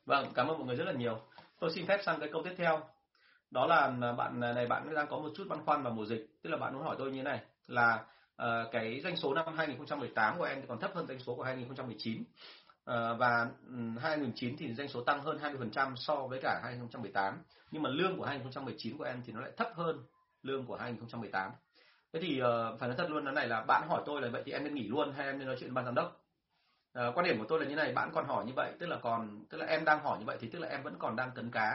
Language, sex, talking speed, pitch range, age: Vietnamese, male, 275 wpm, 120-150 Hz, 30-49